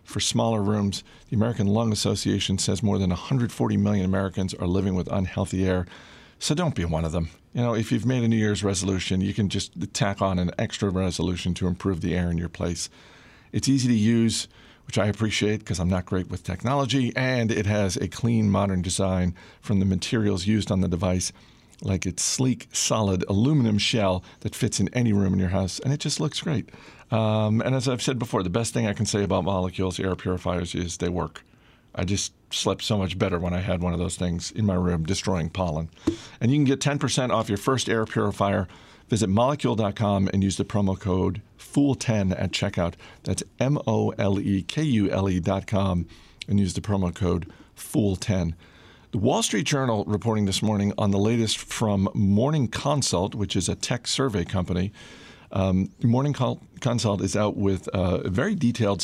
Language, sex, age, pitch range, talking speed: English, male, 50-69, 95-115 Hz, 190 wpm